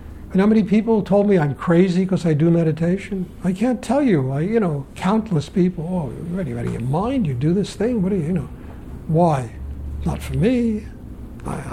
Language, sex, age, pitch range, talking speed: English, male, 60-79, 130-180 Hz, 205 wpm